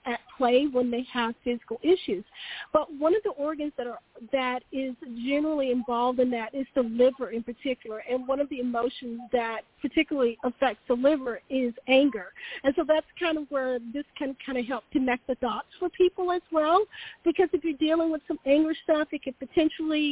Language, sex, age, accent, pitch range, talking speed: English, female, 40-59, American, 245-305 Hz, 195 wpm